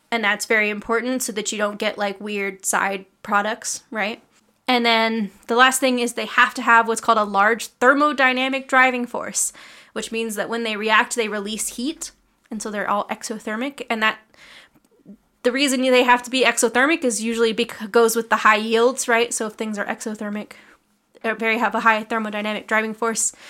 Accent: American